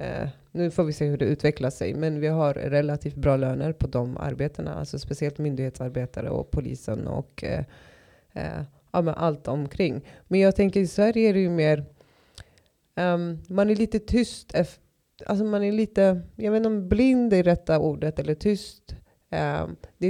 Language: Swedish